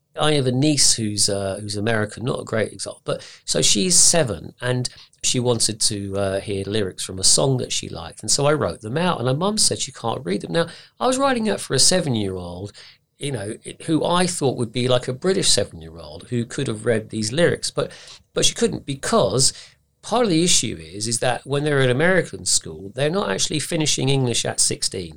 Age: 40-59